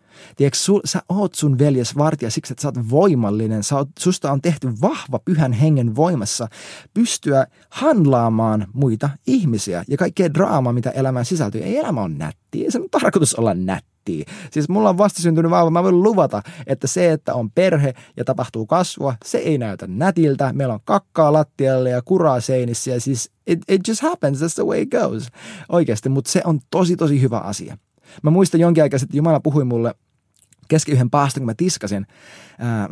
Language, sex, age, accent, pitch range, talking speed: Finnish, male, 20-39, native, 115-160 Hz, 180 wpm